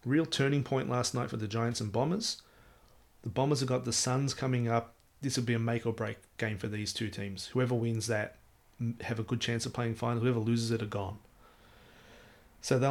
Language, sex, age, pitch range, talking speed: English, male, 30-49, 95-125 Hz, 205 wpm